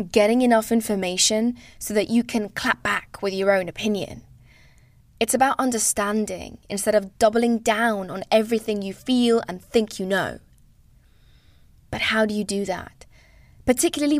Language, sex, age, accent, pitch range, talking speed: English, female, 20-39, British, 190-245 Hz, 150 wpm